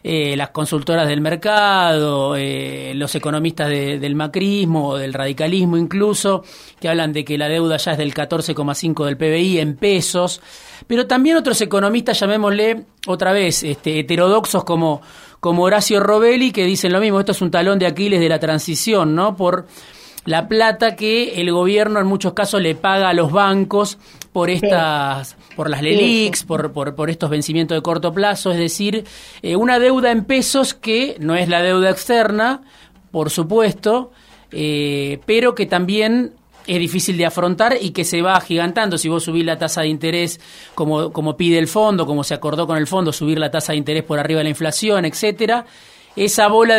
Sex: male